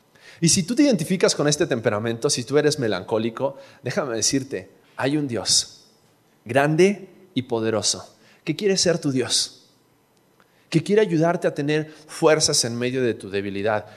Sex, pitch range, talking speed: male, 125-190 Hz, 155 wpm